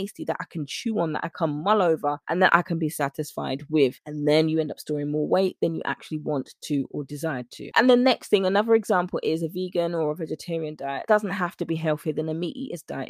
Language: English